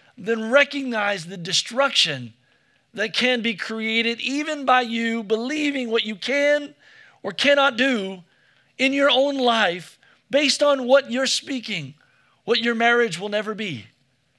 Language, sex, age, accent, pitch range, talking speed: English, male, 40-59, American, 160-250 Hz, 140 wpm